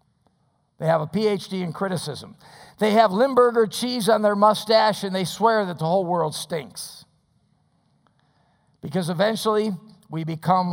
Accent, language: American, English